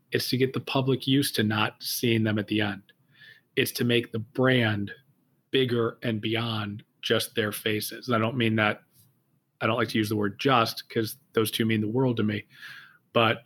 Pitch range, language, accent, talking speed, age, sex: 110-125 Hz, English, American, 205 wpm, 40-59, male